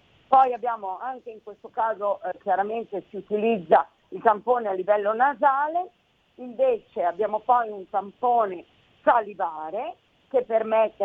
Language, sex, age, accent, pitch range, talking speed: Italian, female, 50-69, native, 200-265 Hz, 125 wpm